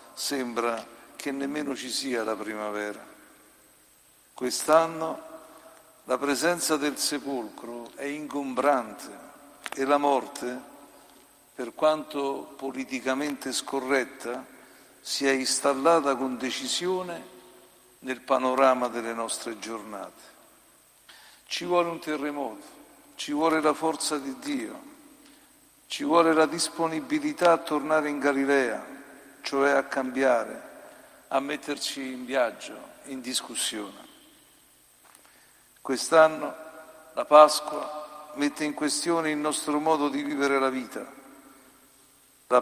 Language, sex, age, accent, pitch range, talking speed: Italian, male, 60-79, native, 130-160 Hz, 100 wpm